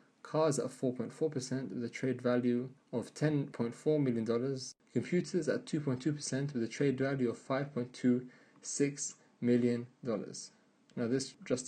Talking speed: 120 wpm